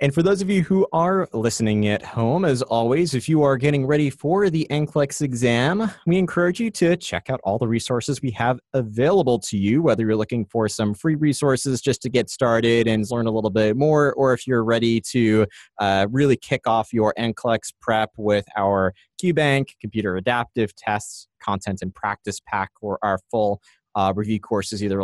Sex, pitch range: male, 105-135 Hz